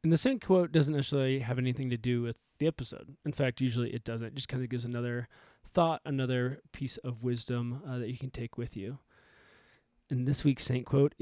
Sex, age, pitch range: male, 20-39, 120-145 Hz